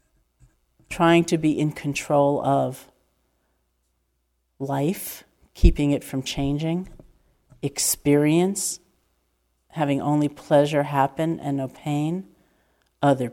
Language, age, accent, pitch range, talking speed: English, 50-69, American, 140-165 Hz, 90 wpm